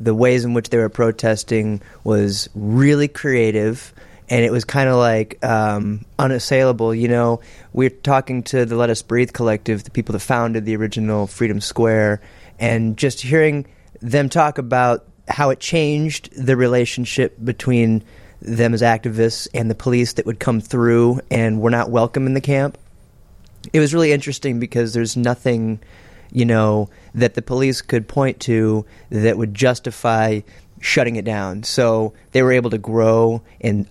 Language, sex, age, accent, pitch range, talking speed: English, male, 30-49, American, 110-125 Hz, 165 wpm